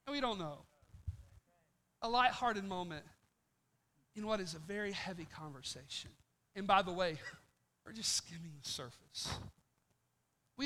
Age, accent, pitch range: 40-59, American, 205-315 Hz